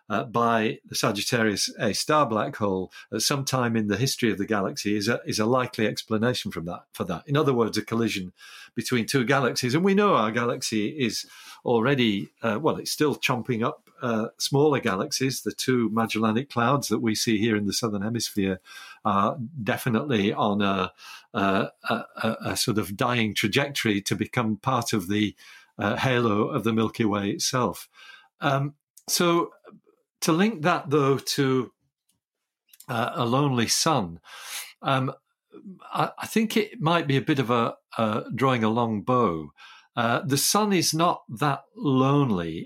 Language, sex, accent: English, male, British